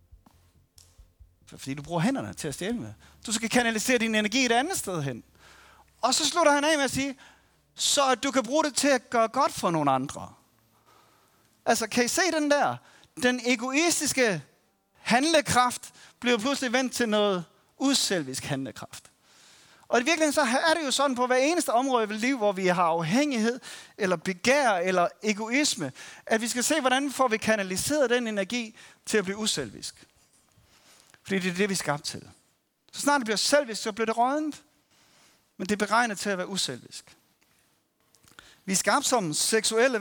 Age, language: 30-49, Danish